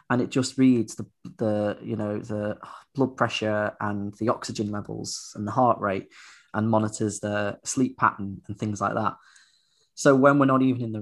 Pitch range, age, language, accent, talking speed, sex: 105-125 Hz, 20-39, English, British, 190 wpm, male